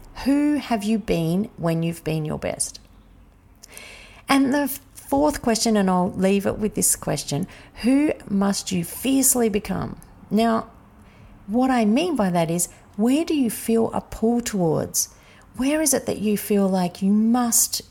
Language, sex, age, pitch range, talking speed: English, female, 40-59, 170-230 Hz, 160 wpm